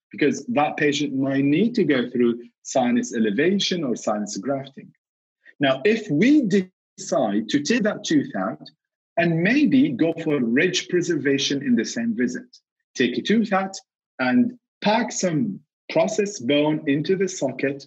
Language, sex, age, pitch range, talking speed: English, male, 50-69, 135-205 Hz, 150 wpm